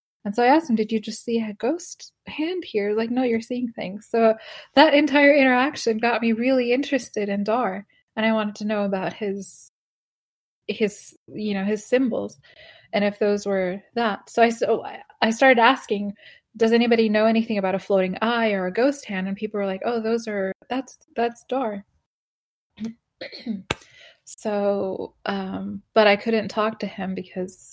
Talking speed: 175 wpm